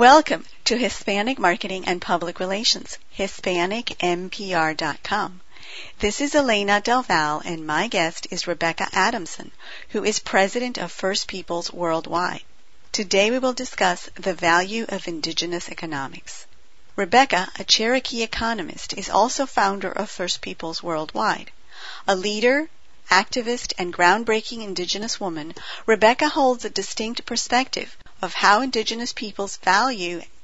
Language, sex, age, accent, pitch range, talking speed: English, female, 50-69, American, 175-225 Hz, 120 wpm